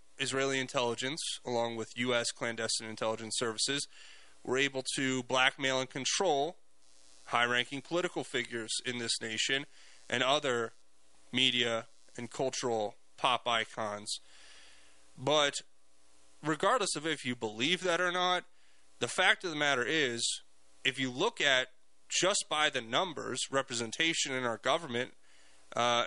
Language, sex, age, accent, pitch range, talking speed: English, male, 20-39, American, 115-140 Hz, 125 wpm